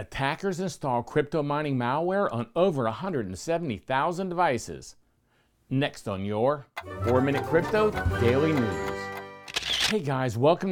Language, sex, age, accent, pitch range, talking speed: English, male, 50-69, American, 110-160 Hz, 105 wpm